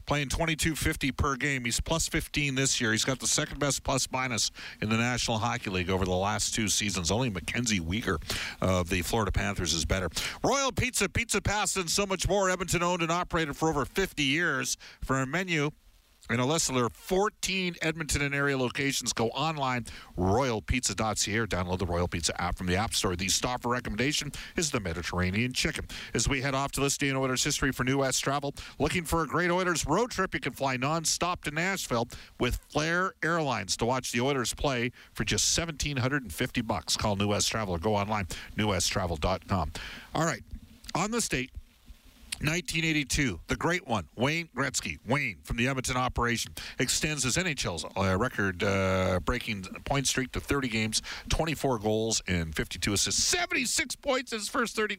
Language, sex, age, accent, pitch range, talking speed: English, male, 50-69, American, 105-155 Hz, 180 wpm